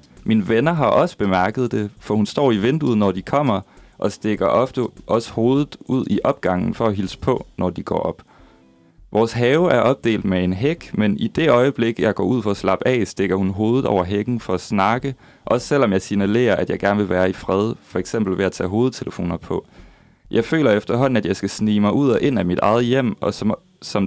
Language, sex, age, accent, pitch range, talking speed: Danish, male, 30-49, native, 95-120 Hz, 225 wpm